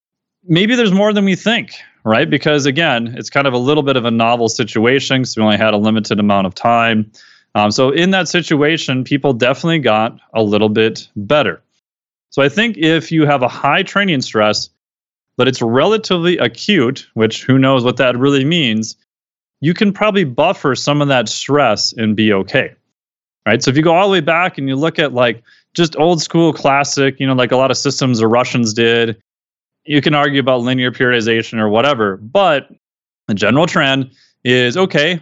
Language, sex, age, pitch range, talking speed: English, male, 30-49, 115-165 Hz, 195 wpm